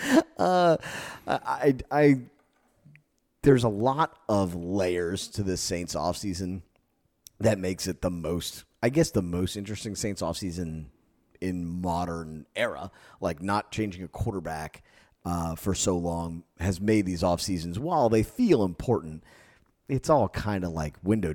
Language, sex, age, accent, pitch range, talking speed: English, male, 30-49, American, 85-110 Hz, 150 wpm